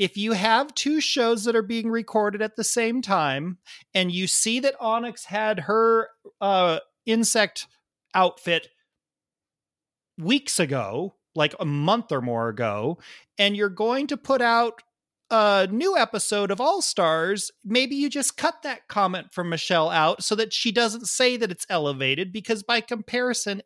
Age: 40-59